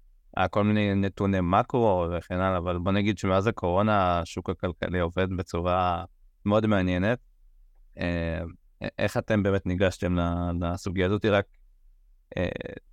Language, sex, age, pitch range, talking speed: Hebrew, male, 20-39, 90-100 Hz, 125 wpm